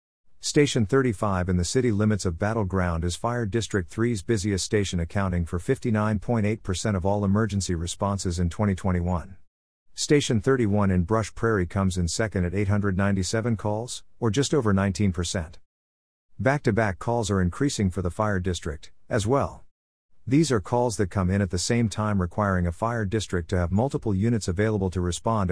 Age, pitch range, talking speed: 50-69, 90-115 Hz, 160 wpm